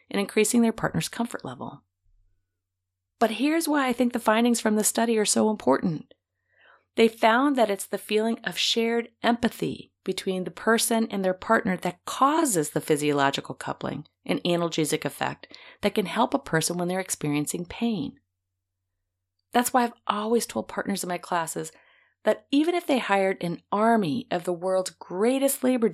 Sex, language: female, English